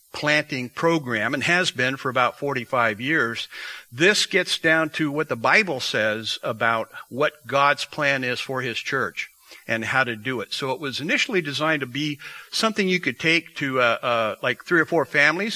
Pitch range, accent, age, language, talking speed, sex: 125-160 Hz, American, 60-79, English, 190 wpm, male